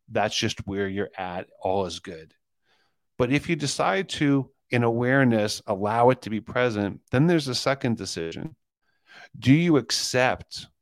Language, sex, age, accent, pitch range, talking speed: English, male, 40-59, American, 95-120 Hz, 155 wpm